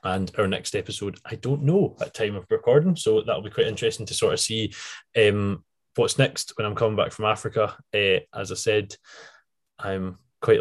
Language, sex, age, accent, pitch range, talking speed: English, male, 20-39, British, 100-135 Hz, 200 wpm